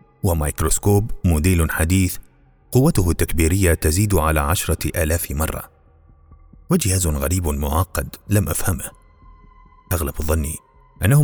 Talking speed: 100 wpm